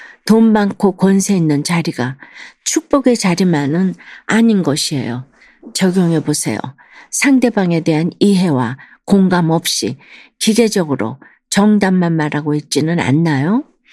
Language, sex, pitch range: Korean, female, 150-210 Hz